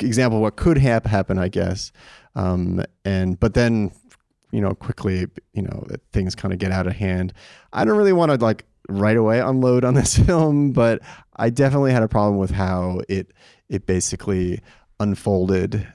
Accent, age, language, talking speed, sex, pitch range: American, 30-49, English, 175 wpm, male, 95-125 Hz